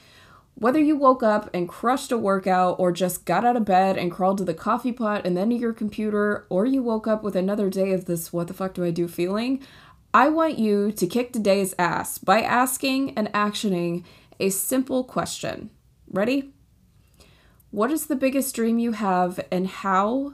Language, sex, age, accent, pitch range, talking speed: English, female, 20-39, American, 185-245 Hz, 175 wpm